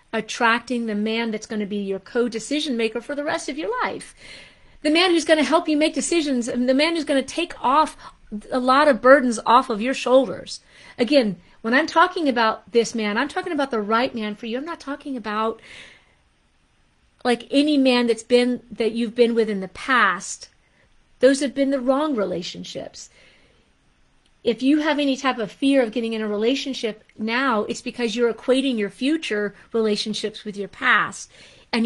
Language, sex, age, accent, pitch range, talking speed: English, female, 40-59, American, 215-275 Hz, 190 wpm